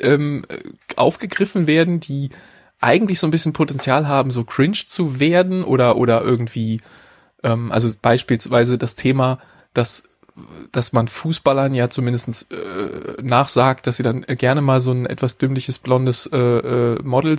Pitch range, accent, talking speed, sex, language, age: 125-155 Hz, German, 140 wpm, male, German, 20-39